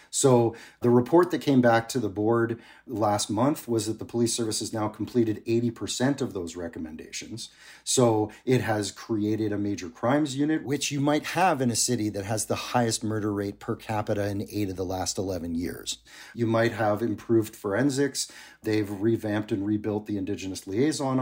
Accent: American